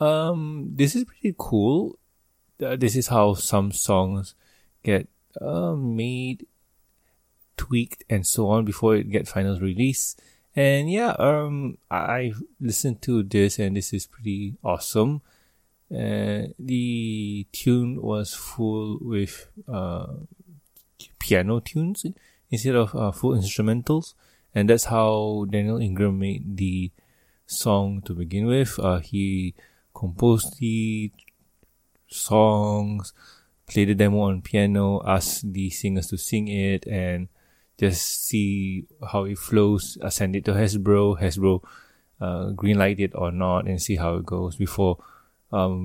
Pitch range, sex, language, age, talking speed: 95-125 Hz, male, English, 20-39, 130 wpm